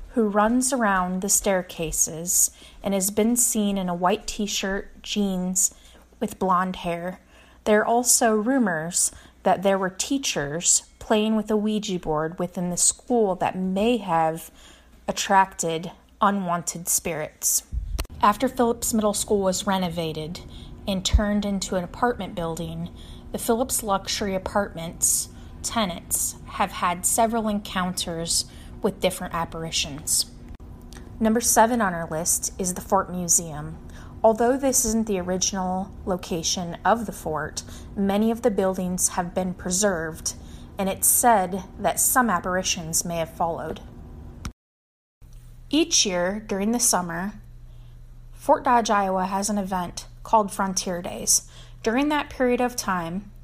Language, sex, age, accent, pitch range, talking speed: English, female, 30-49, American, 175-215 Hz, 130 wpm